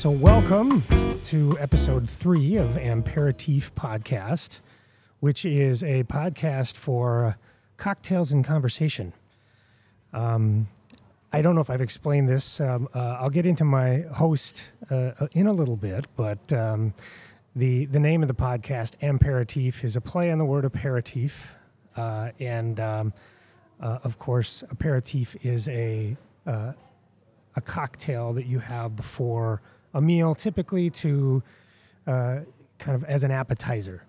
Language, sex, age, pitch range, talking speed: English, male, 30-49, 115-145 Hz, 135 wpm